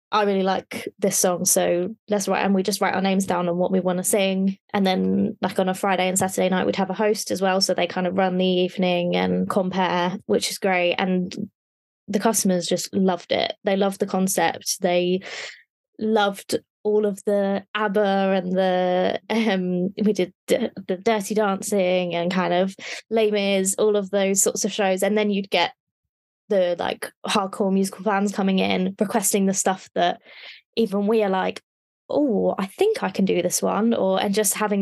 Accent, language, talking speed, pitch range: British, English, 195 wpm, 185-210 Hz